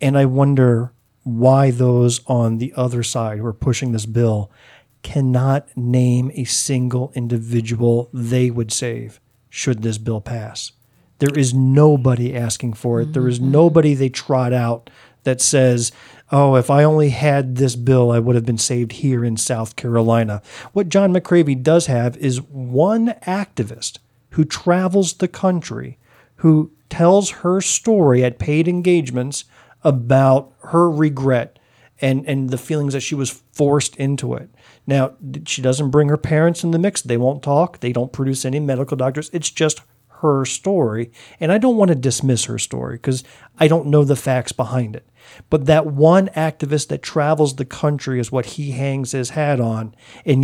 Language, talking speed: English, 170 wpm